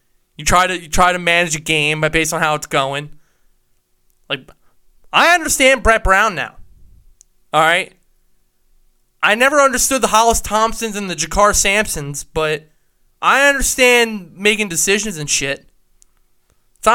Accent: American